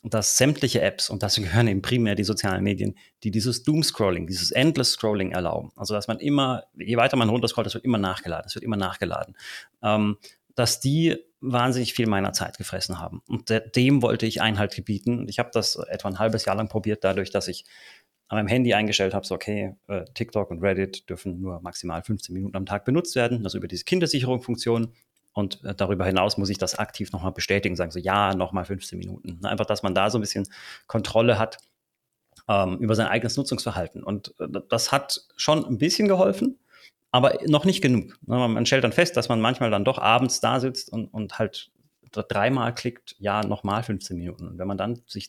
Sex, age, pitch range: male, 30-49, 95-120 Hz